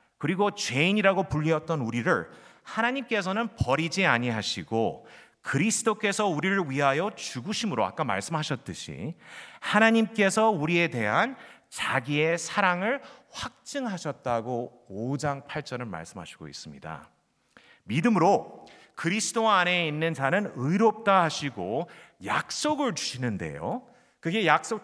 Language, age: Korean, 30-49